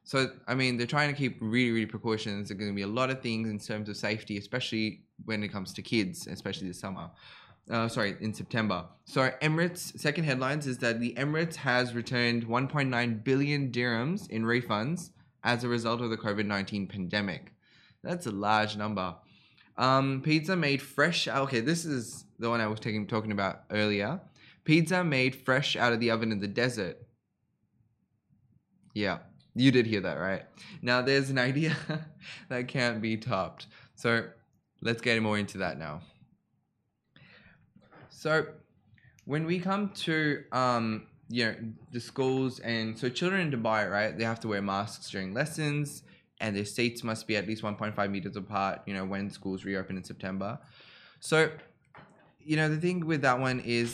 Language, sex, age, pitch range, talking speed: Arabic, male, 20-39, 105-140 Hz, 175 wpm